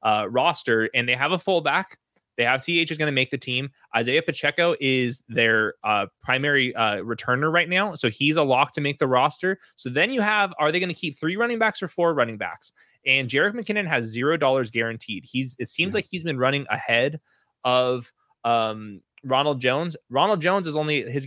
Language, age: English, 20-39